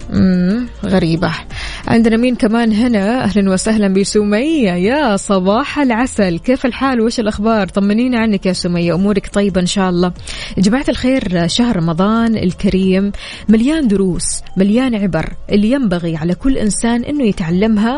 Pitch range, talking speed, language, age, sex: 190-235 Hz, 135 wpm, Arabic, 20-39, female